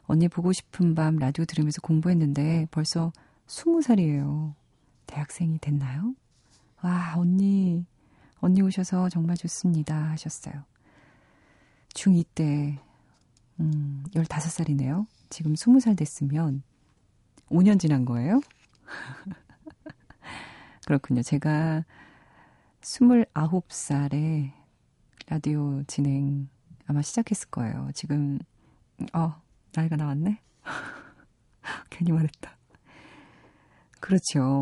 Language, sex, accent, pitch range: Korean, female, native, 140-175 Hz